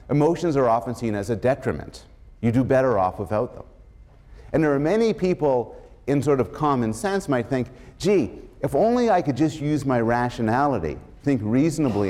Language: English